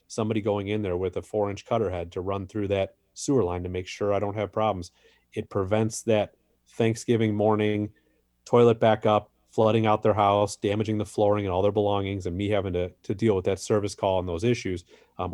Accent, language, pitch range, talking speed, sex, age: American, English, 95-115 Hz, 215 wpm, male, 30-49